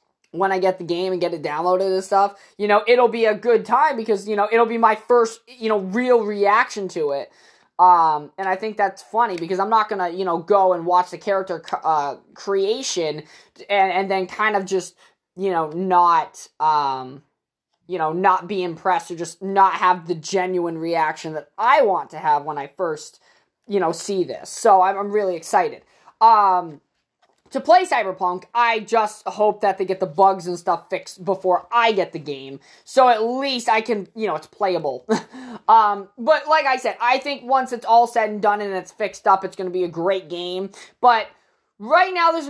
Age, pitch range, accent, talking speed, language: 20-39, 180-230 Hz, American, 205 wpm, English